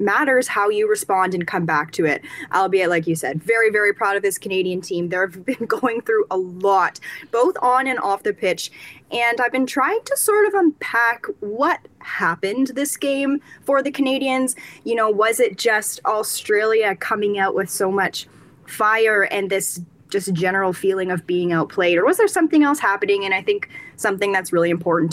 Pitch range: 180-245 Hz